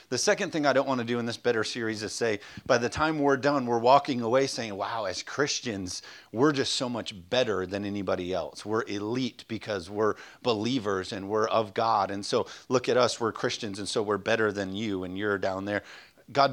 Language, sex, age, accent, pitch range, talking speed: English, male, 40-59, American, 105-135 Hz, 220 wpm